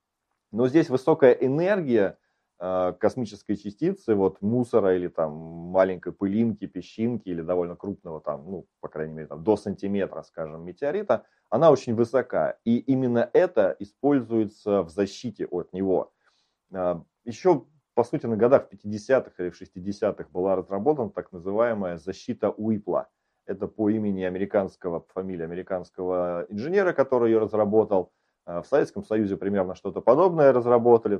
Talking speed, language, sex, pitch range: 140 wpm, Russian, male, 95-125 Hz